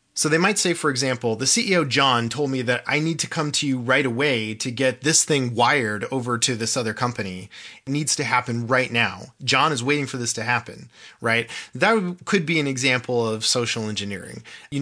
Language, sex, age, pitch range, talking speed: English, male, 30-49, 120-155 Hz, 215 wpm